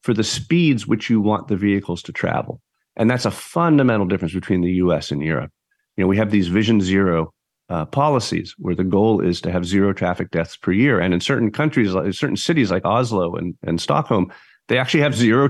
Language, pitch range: English, 90-125 Hz